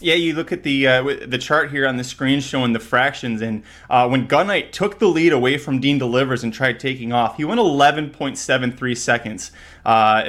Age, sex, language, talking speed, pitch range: 30-49, male, English, 225 wpm, 120-165 Hz